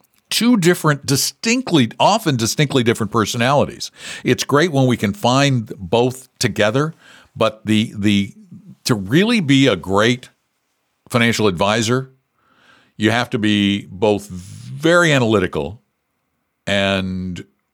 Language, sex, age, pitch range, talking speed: English, male, 60-79, 90-125 Hz, 110 wpm